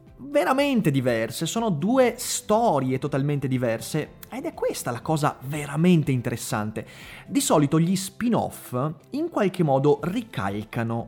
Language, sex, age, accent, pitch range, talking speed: Italian, male, 30-49, native, 120-175 Hz, 120 wpm